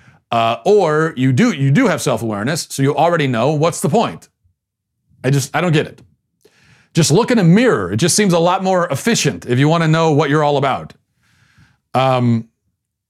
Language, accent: English, American